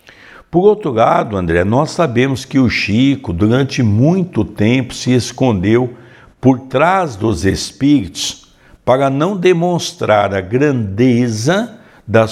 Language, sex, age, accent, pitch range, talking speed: Portuguese, male, 60-79, Brazilian, 105-145 Hz, 115 wpm